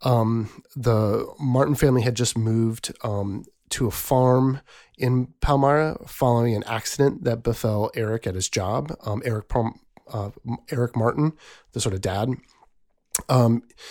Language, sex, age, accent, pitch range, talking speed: English, male, 30-49, American, 110-130 Hz, 140 wpm